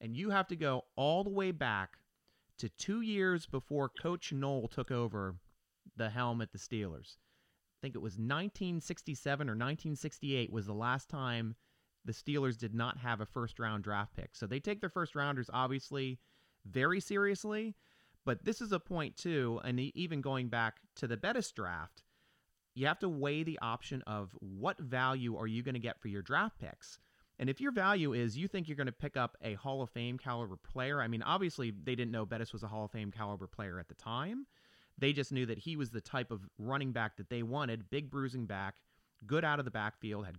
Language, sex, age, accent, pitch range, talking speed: English, male, 30-49, American, 115-145 Hz, 210 wpm